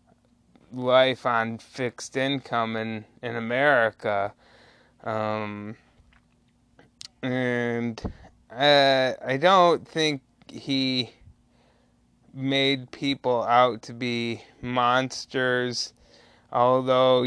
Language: English